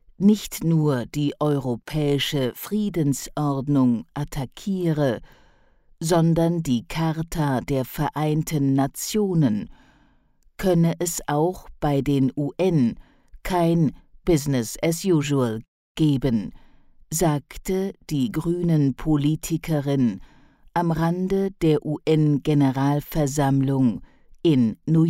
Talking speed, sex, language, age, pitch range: 80 wpm, female, English, 50-69, 140-170 Hz